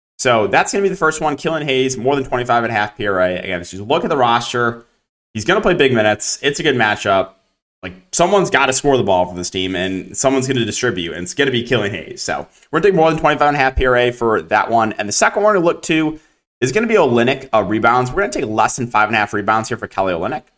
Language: English